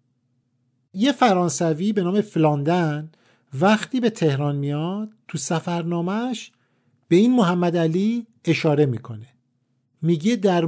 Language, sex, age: Persian, male, 50-69